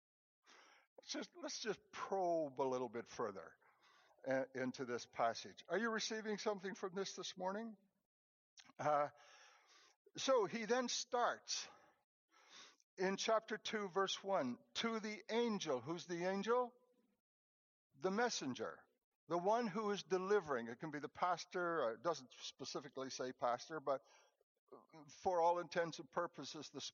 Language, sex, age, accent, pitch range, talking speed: English, male, 60-79, American, 160-225 Hz, 135 wpm